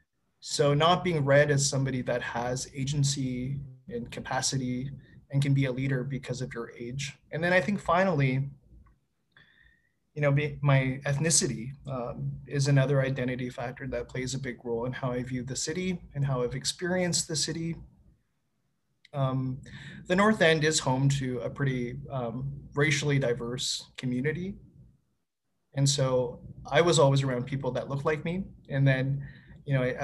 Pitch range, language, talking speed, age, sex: 130-145 Hz, English, 160 wpm, 20-39, male